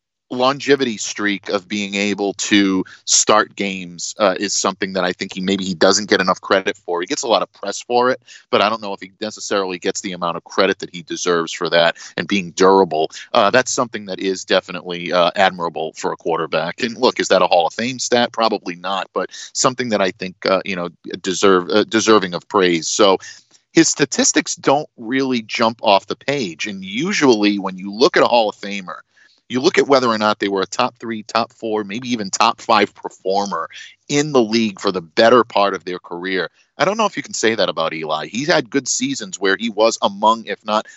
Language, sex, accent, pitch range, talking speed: English, male, American, 95-120 Hz, 225 wpm